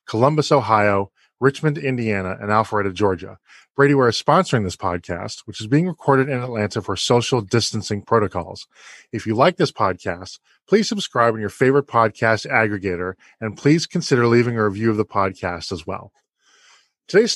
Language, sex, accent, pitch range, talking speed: English, male, American, 105-130 Hz, 160 wpm